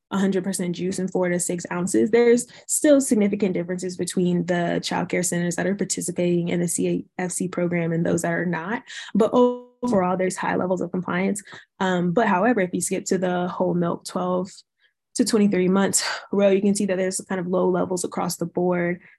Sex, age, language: female, 20-39, English